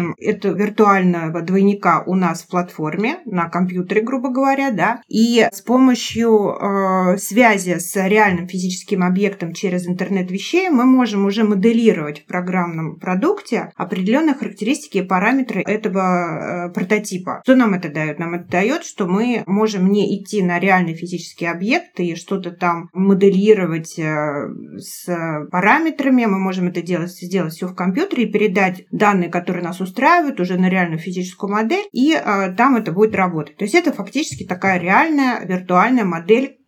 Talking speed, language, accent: 155 wpm, Russian, native